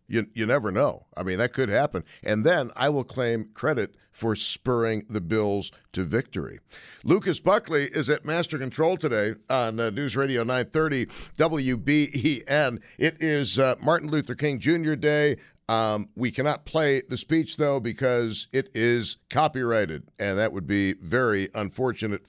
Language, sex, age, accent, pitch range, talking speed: English, male, 50-69, American, 110-150 Hz, 160 wpm